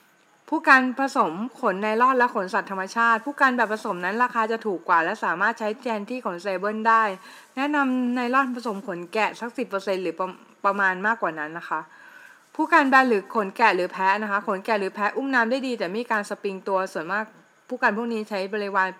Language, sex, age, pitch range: Thai, female, 20-39, 195-245 Hz